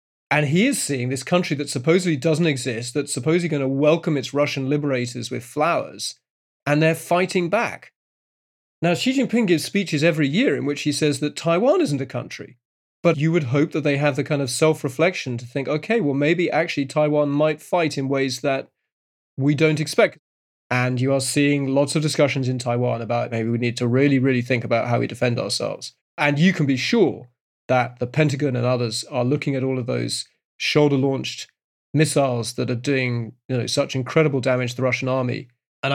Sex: male